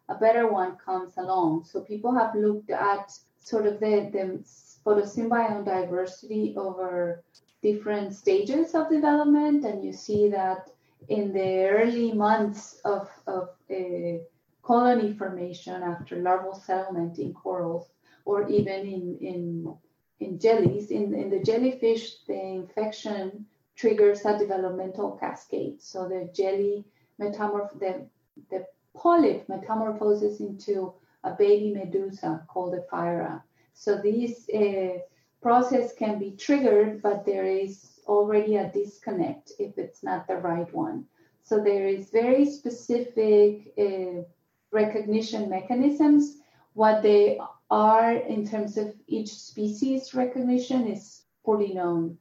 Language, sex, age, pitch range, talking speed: English, female, 30-49, 185-220 Hz, 125 wpm